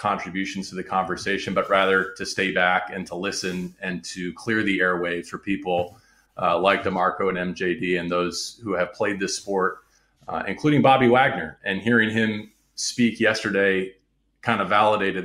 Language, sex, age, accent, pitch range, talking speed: English, male, 30-49, American, 95-105 Hz, 170 wpm